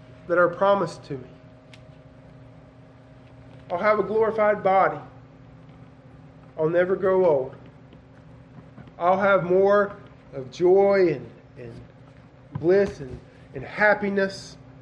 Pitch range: 130-170 Hz